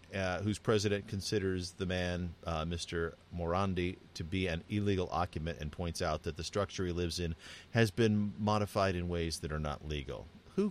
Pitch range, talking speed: 80-100 Hz, 185 wpm